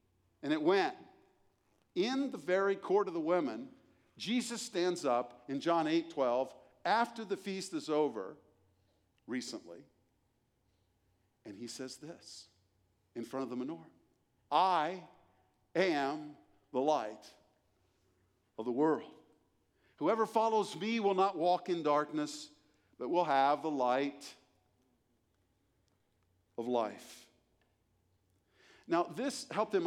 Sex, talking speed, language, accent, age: male, 115 wpm, English, American, 50-69